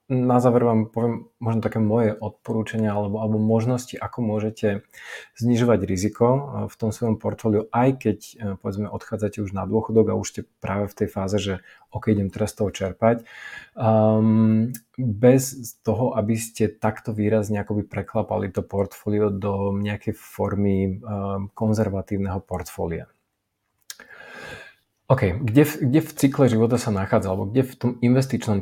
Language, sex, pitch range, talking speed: Slovak, male, 100-120 Hz, 145 wpm